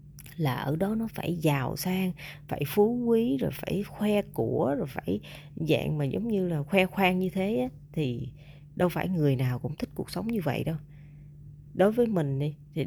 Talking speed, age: 195 wpm, 20-39